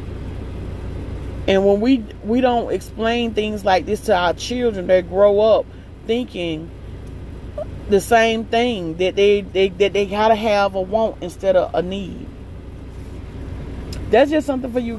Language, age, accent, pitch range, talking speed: English, 40-59, American, 175-225 Hz, 150 wpm